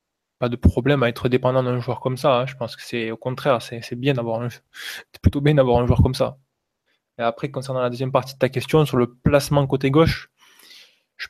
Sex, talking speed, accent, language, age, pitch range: male, 240 wpm, French, French, 20-39, 120-135 Hz